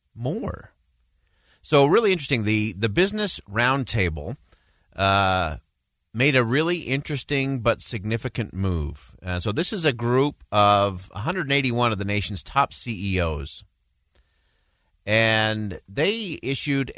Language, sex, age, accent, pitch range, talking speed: English, male, 40-59, American, 90-130 Hz, 115 wpm